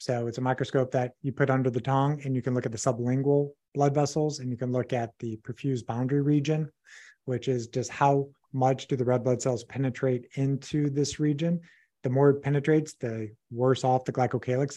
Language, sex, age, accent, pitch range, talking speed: English, male, 30-49, American, 125-145 Hz, 205 wpm